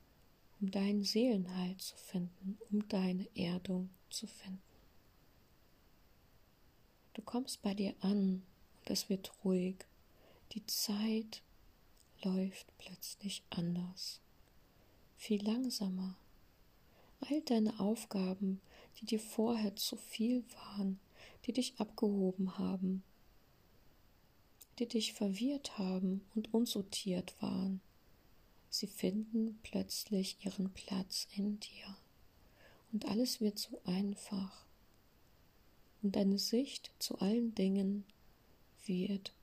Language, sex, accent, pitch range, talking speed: German, female, German, 190-220 Hz, 100 wpm